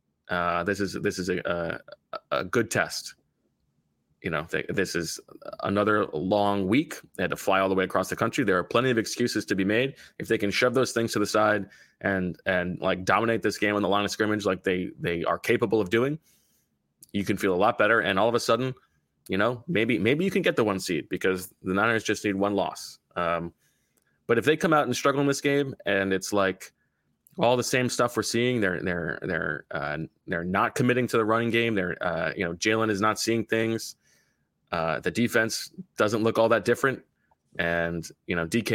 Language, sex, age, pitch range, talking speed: English, male, 20-39, 95-115 Hz, 220 wpm